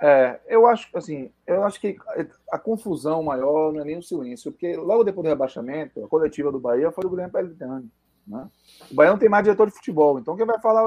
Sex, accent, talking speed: male, Brazilian, 225 wpm